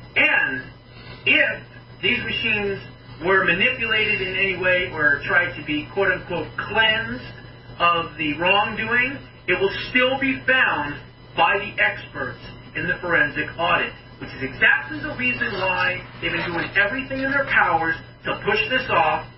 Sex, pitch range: male, 150-225 Hz